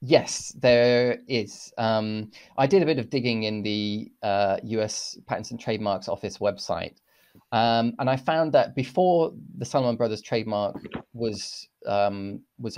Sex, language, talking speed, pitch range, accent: male, English, 150 wpm, 100-125 Hz, British